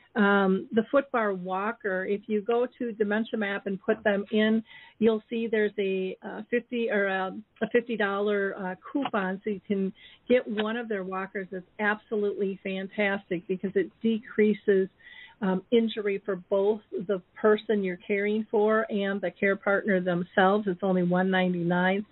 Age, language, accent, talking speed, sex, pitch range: 50-69, English, American, 165 wpm, female, 195-225 Hz